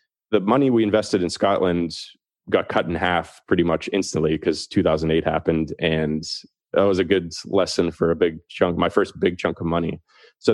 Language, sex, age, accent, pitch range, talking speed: English, male, 30-49, American, 85-105 Hz, 190 wpm